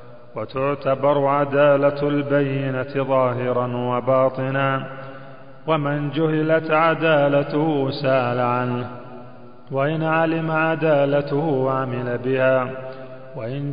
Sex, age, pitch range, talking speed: male, 30-49, 130-160 Hz, 70 wpm